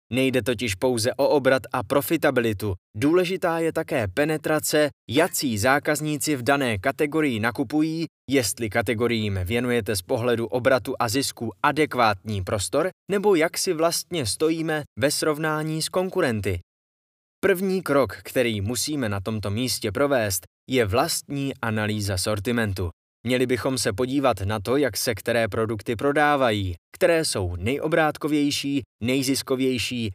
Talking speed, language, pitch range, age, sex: 125 wpm, Czech, 110-150 Hz, 20-39, male